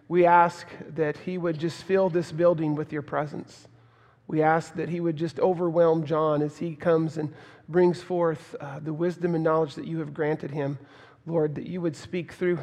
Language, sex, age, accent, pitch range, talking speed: English, male, 40-59, American, 150-175 Hz, 200 wpm